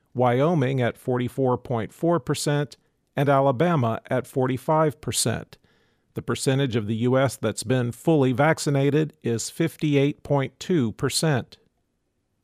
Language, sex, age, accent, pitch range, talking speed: English, male, 50-69, American, 120-145 Hz, 85 wpm